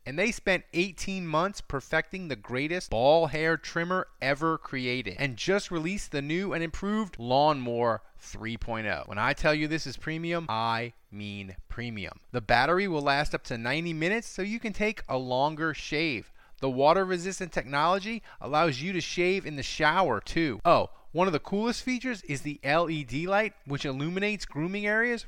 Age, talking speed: 30-49, 170 wpm